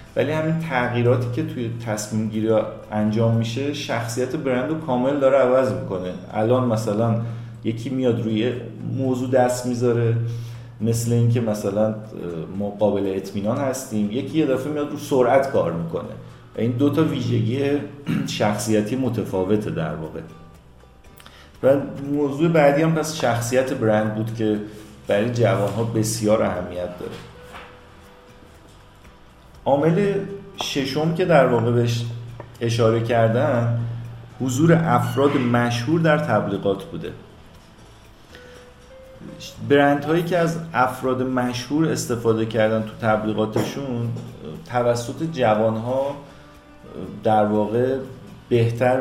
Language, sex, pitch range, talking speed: Persian, male, 110-135 Hz, 110 wpm